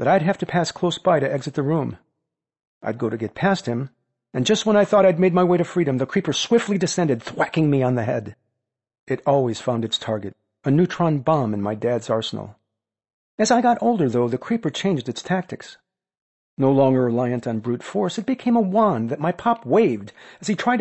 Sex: male